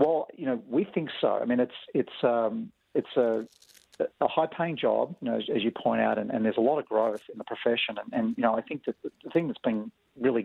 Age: 50-69